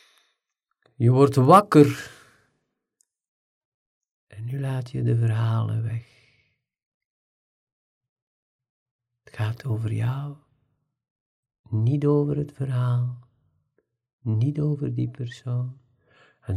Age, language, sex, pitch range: 50-69, Dutch, male, 110-130 Hz